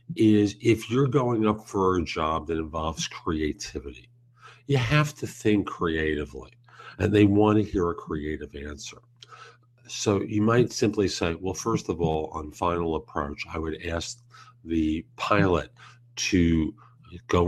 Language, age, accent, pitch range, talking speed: English, 50-69, American, 80-115 Hz, 150 wpm